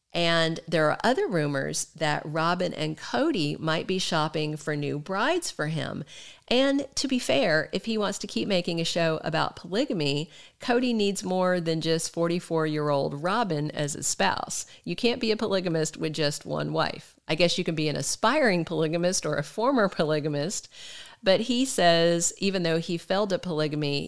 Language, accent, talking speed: English, American, 175 wpm